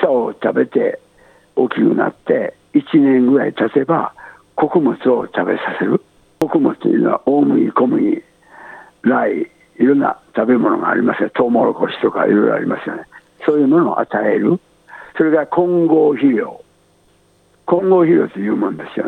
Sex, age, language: male, 60-79, Japanese